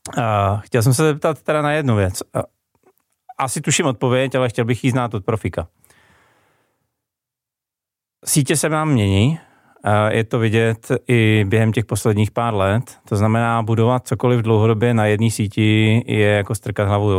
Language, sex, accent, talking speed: Czech, male, native, 165 wpm